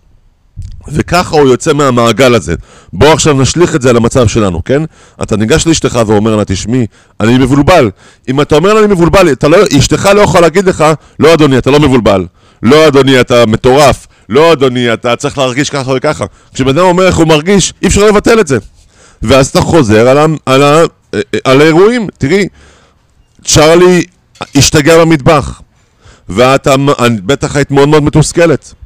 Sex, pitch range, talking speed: male, 120-160 Hz, 90 wpm